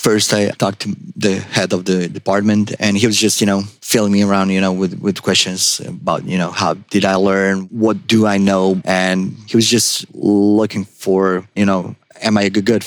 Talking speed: 215 wpm